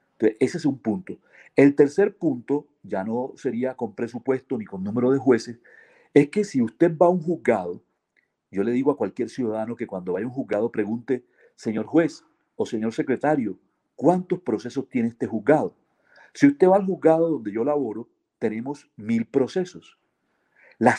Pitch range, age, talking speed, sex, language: 125-165 Hz, 50-69, 175 wpm, male, Spanish